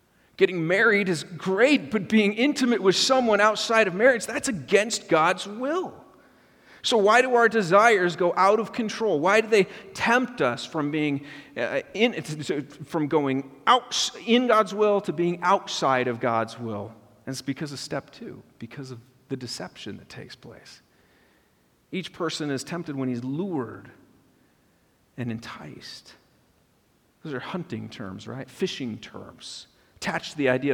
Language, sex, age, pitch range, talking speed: English, male, 40-59, 130-210 Hz, 150 wpm